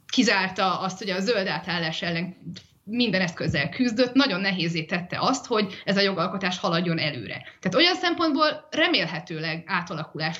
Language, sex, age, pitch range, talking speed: Hungarian, female, 20-39, 165-210 Hz, 140 wpm